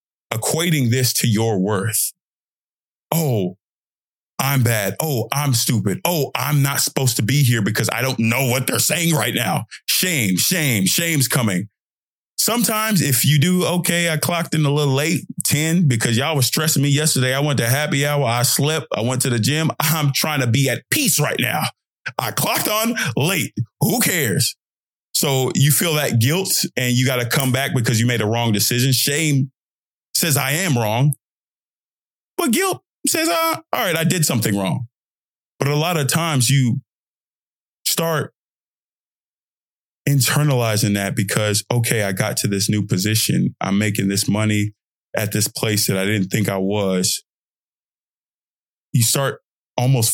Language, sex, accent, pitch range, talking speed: English, male, American, 110-150 Hz, 170 wpm